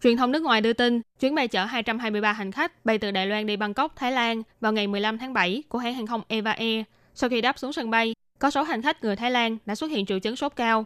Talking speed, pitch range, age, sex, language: 280 wpm, 210-260 Hz, 10-29, female, Vietnamese